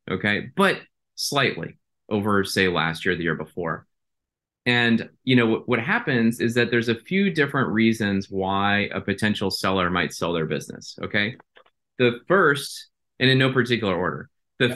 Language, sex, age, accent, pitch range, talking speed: English, male, 30-49, American, 95-125 Hz, 160 wpm